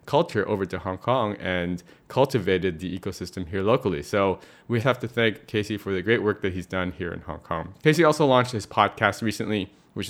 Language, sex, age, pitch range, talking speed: English, male, 20-39, 95-120 Hz, 210 wpm